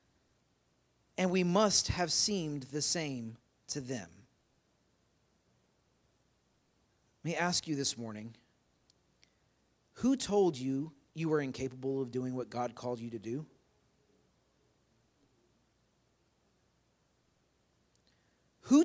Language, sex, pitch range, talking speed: English, male, 125-195 Hz, 95 wpm